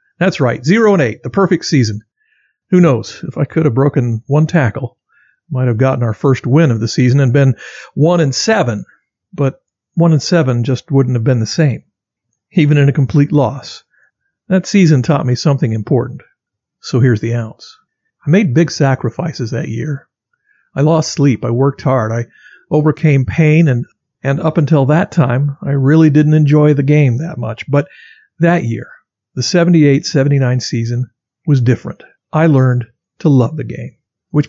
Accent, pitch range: American, 130-165 Hz